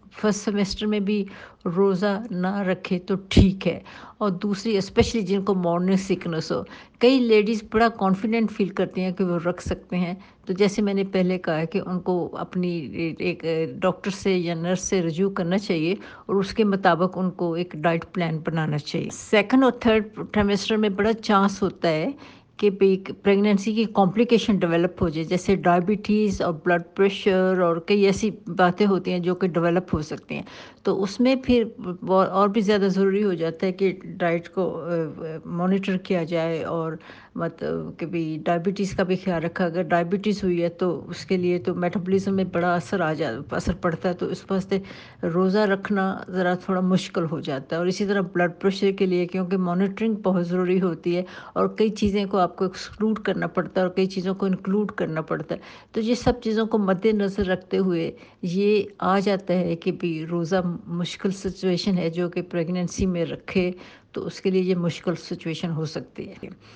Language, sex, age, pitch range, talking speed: Urdu, female, 60-79, 175-200 Hz, 190 wpm